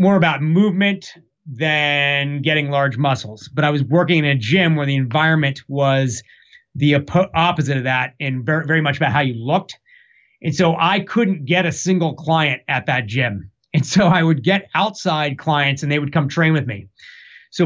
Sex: male